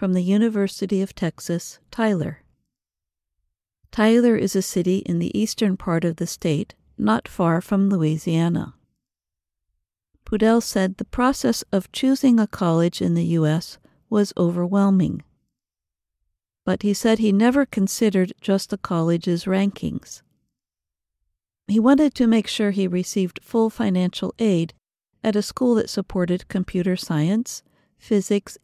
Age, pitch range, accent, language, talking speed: 50-69, 170-215 Hz, American, English, 130 wpm